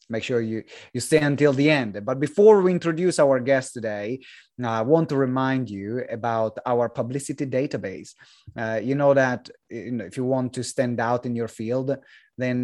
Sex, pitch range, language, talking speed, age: male, 115-145 Hz, English, 190 wpm, 30-49